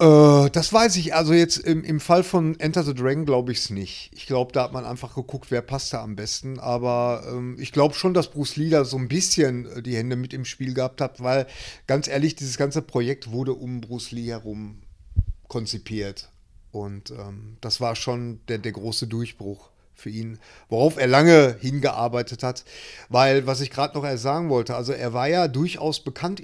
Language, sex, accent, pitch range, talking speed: German, male, German, 120-150 Hz, 200 wpm